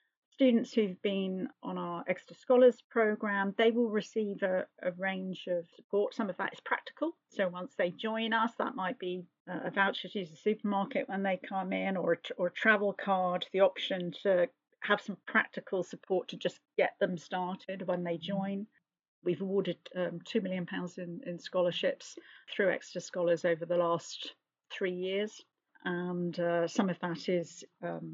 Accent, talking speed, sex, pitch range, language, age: British, 175 wpm, female, 175-210 Hz, English, 40-59